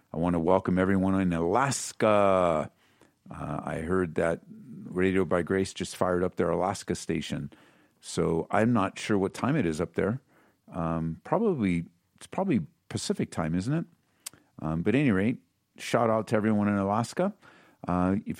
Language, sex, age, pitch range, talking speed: English, male, 50-69, 90-115 Hz, 165 wpm